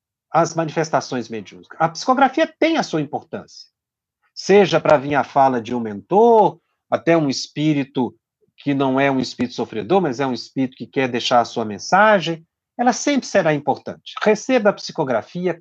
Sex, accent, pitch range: male, Brazilian, 130-170 Hz